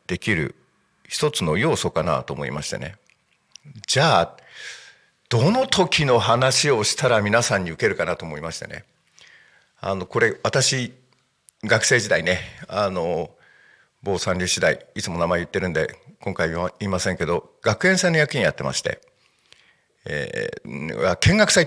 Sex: male